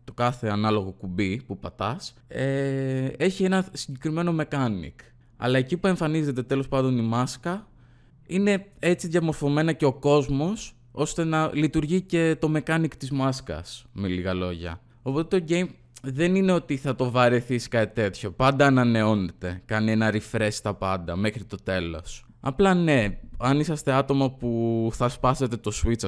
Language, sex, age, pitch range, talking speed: Greek, male, 20-39, 100-140 Hz, 155 wpm